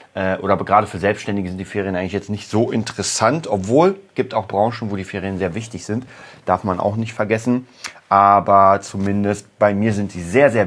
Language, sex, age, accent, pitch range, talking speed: German, male, 30-49, German, 95-115 Hz, 200 wpm